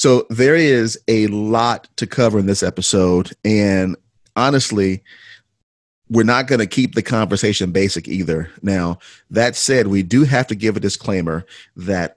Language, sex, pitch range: English, male, 95-115 Hz